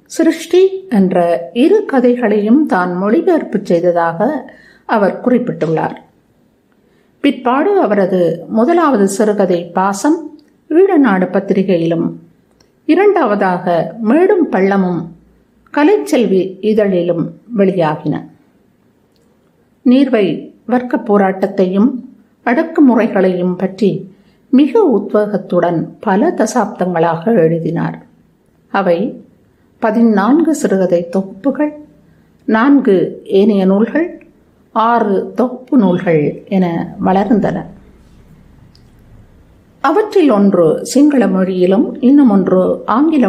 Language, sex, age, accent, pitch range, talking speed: Tamil, female, 50-69, native, 185-260 Hz, 70 wpm